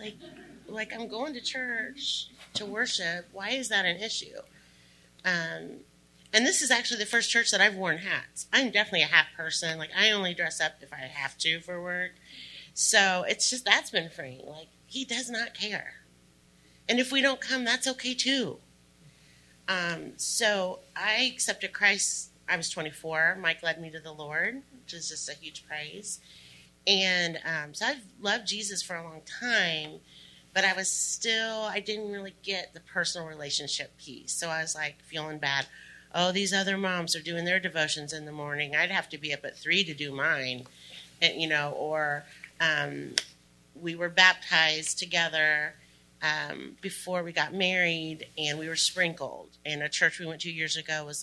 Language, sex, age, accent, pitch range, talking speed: English, female, 30-49, American, 150-200 Hz, 185 wpm